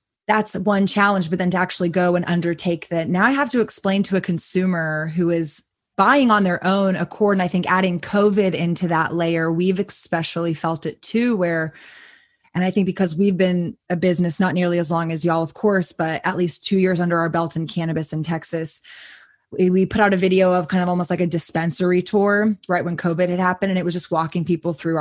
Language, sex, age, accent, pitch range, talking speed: English, female, 20-39, American, 165-195 Hz, 225 wpm